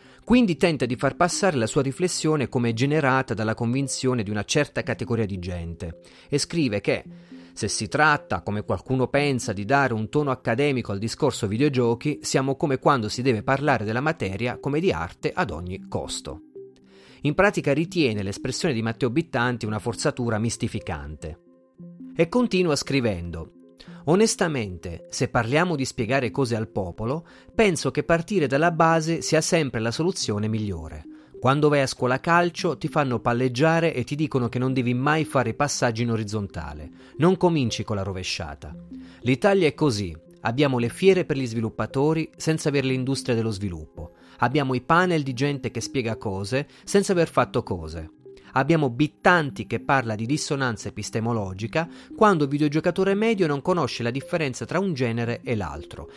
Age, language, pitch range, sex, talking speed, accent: 30-49, Italian, 110-155 Hz, male, 160 wpm, native